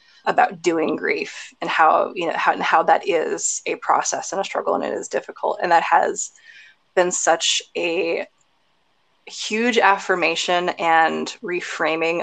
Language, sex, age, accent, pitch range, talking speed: English, female, 20-39, American, 170-215 Hz, 150 wpm